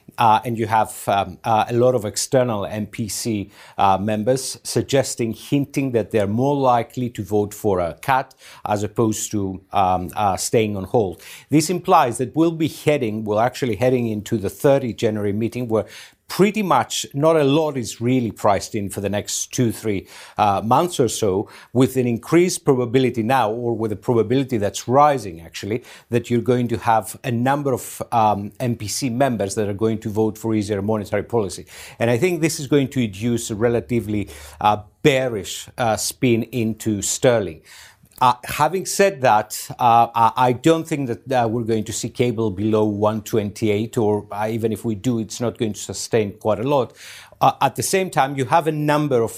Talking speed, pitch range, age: 185 wpm, 105-130 Hz, 50-69